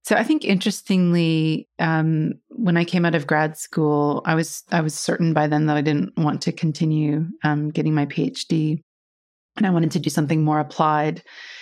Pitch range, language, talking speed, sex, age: 155-175 Hz, English, 190 wpm, female, 30-49